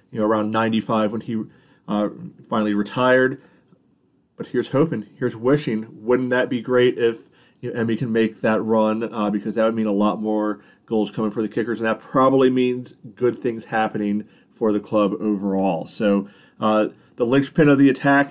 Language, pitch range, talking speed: English, 110-135 Hz, 185 wpm